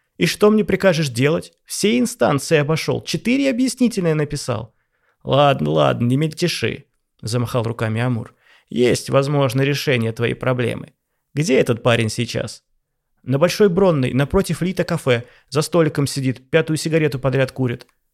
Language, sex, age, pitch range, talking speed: Russian, male, 30-49, 120-150 Hz, 135 wpm